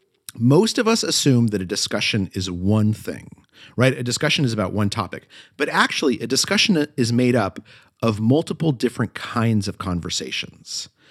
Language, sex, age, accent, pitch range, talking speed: English, male, 40-59, American, 105-150 Hz, 160 wpm